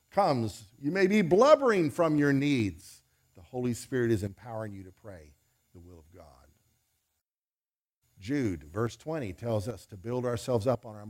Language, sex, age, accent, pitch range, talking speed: English, male, 50-69, American, 100-160 Hz, 170 wpm